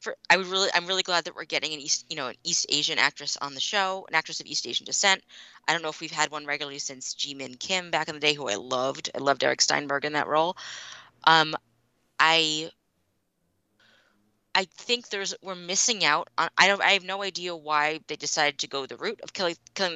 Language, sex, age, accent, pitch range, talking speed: English, female, 20-39, American, 140-190 Hz, 230 wpm